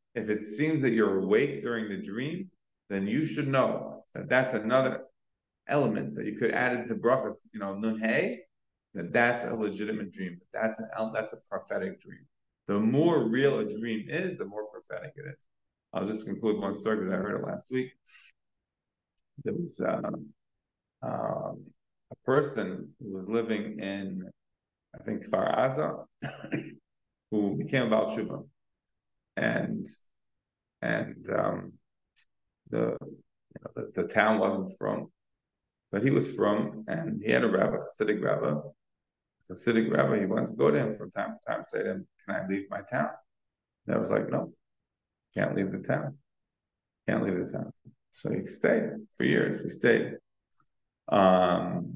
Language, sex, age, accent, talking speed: English, male, 30-49, American, 165 wpm